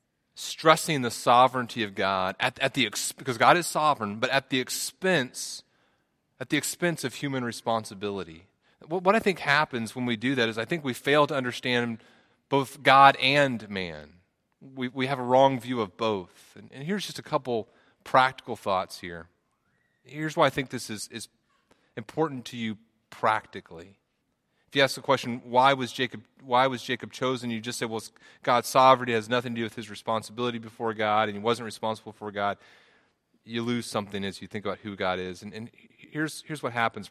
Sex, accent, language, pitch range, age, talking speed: male, American, English, 110-135 Hz, 30-49, 190 wpm